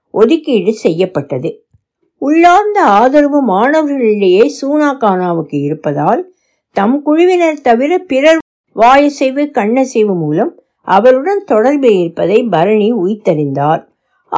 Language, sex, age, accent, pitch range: Tamil, female, 60-79, native, 185-290 Hz